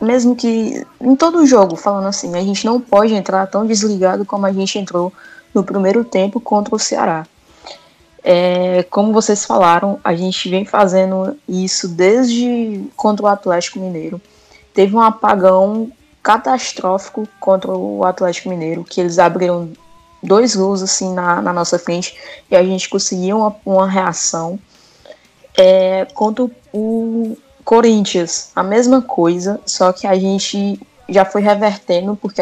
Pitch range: 185-220 Hz